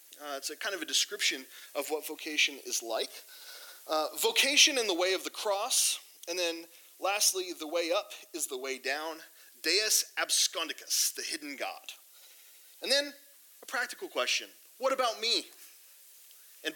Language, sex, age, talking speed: English, male, 30-49, 160 wpm